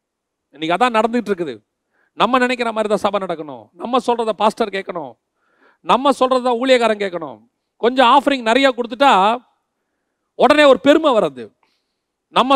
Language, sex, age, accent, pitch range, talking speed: Tamil, male, 40-59, native, 210-270 Hz, 55 wpm